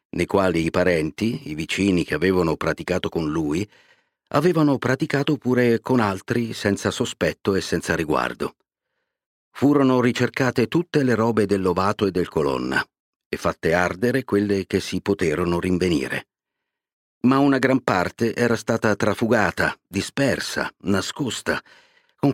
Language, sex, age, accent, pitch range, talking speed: Italian, male, 50-69, native, 90-125 Hz, 130 wpm